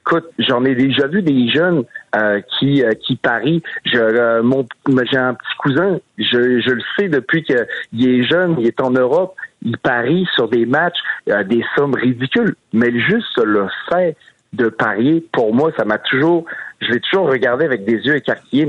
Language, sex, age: French, male, 50-69